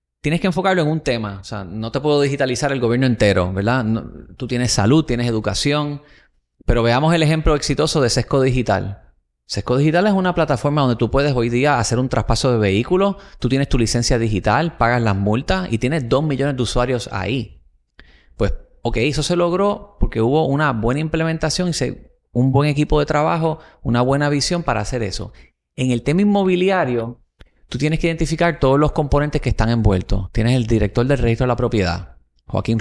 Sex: male